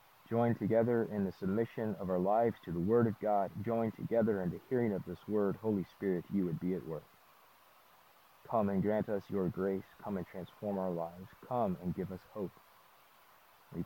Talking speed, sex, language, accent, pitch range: 195 wpm, male, English, American, 105-130 Hz